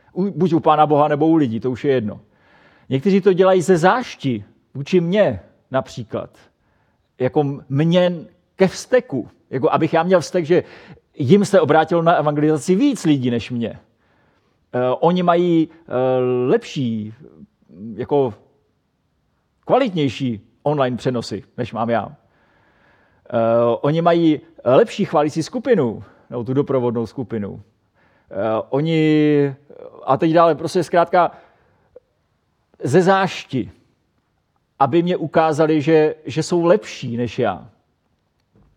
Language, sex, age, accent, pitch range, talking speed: Czech, male, 40-59, native, 125-165 Hz, 115 wpm